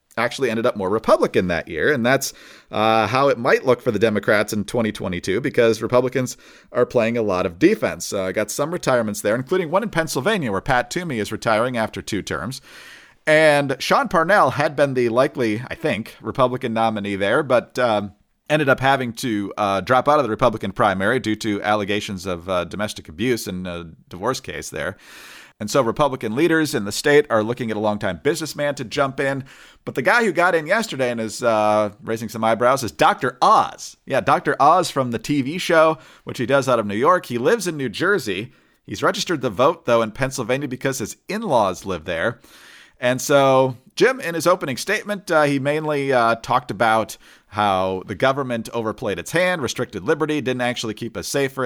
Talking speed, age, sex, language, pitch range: 200 wpm, 40-59, male, English, 110-145 Hz